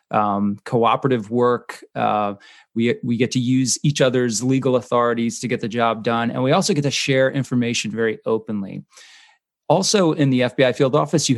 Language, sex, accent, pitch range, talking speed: English, male, American, 110-130 Hz, 180 wpm